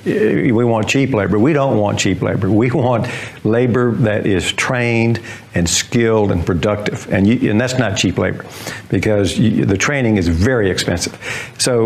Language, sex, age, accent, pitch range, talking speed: English, male, 60-79, American, 105-125 Hz, 160 wpm